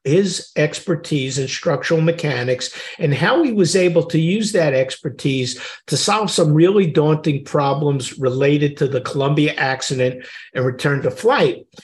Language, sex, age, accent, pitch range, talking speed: English, male, 50-69, American, 135-170 Hz, 145 wpm